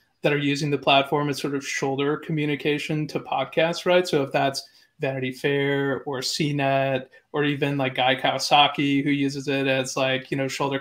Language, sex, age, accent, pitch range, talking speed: English, male, 30-49, American, 135-155 Hz, 185 wpm